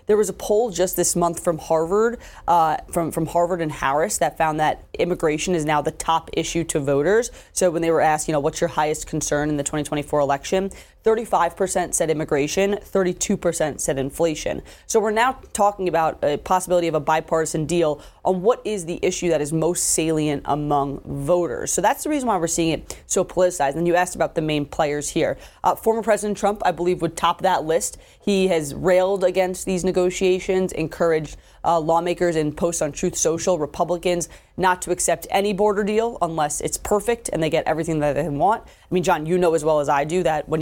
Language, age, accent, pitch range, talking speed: English, 20-39, American, 155-185 Hz, 210 wpm